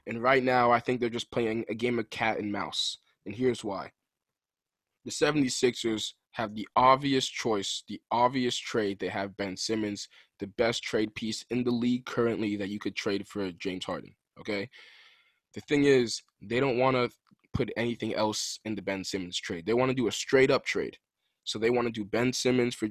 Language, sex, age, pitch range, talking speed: English, male, 20-39, 110-125 Hz, 200 wpm